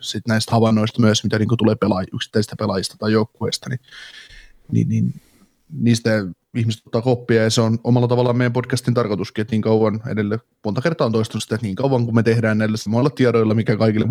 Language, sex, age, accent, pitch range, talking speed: Finnish, male, 20-39, native, 110-125 Hz, 190 wpm